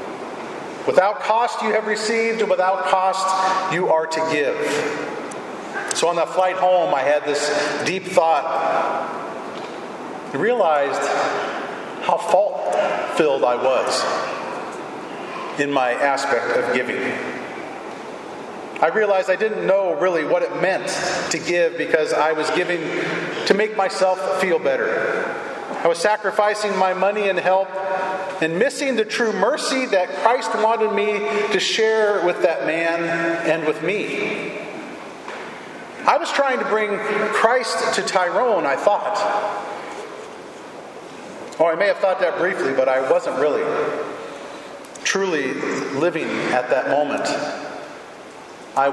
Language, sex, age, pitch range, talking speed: English, male, 40-59, 160-220 Hz, 125 wpm